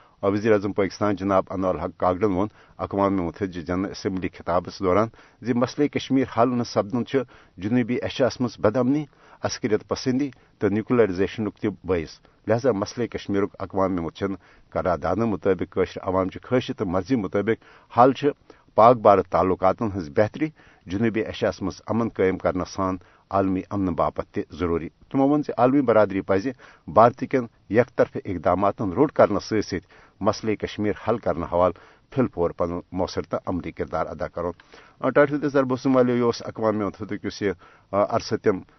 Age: 60-79